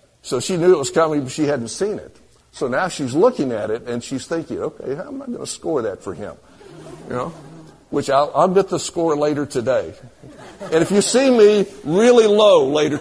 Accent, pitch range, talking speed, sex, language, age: American, 145-200 Hz, 220 wpm, male, English, 60-79